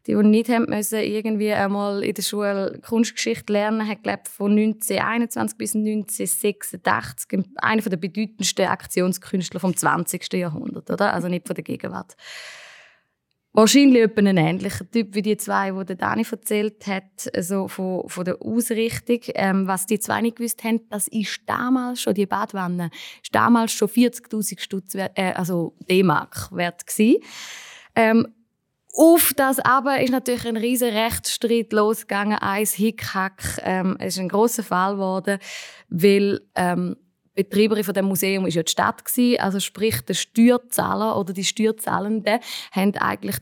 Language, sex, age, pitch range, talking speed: German, female, 20-39, 190-225 Hz, 150 wpm